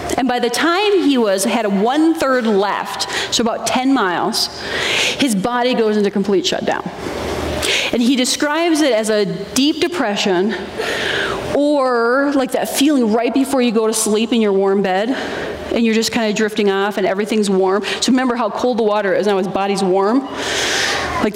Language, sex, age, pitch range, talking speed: English, female, 30-49, 210-275 Hz, 185 wpm